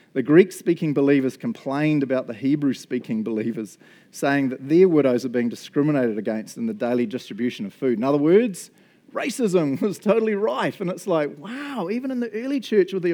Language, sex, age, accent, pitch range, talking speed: English, male, 40-59, Australian, 145-195 Hz, 195 wpm